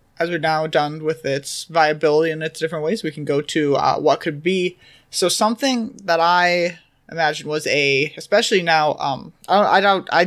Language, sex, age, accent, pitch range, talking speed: English, male, 20-39, American, 150-190 Hz, 185 wpm